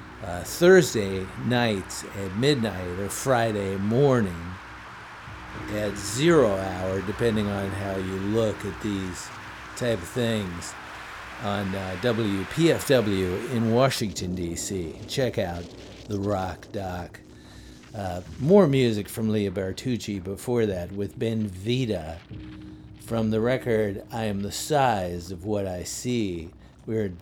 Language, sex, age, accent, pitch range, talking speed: English, male, 50-69, American, 90-115 Hz, 125 wpm